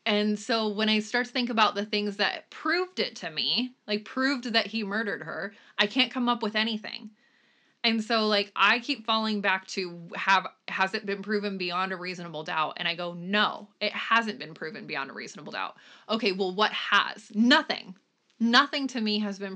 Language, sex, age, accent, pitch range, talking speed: English, female, 20-39, American, 195-230 Hz, 205 wpm